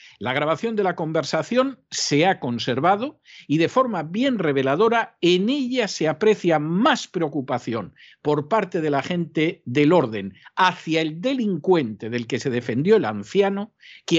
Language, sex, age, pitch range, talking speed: Spanish, male, 50-69, 135-195 Hz, 150 wpm